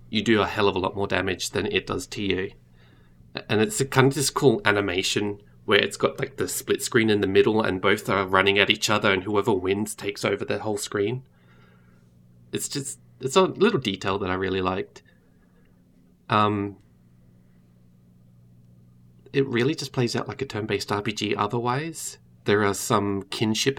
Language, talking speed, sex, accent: English, 180 wpm, male, Australian